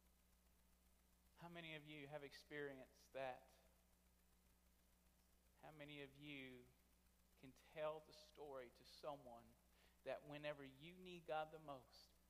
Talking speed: 115 wpm